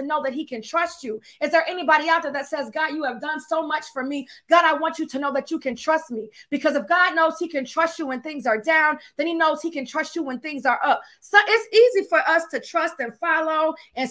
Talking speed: 280 wpm